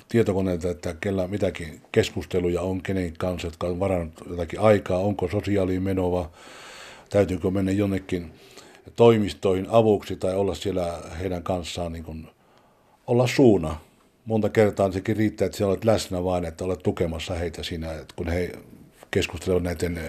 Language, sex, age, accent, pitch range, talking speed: Finnish, male, 60-79, native, 85-105 Hz, 145 wpm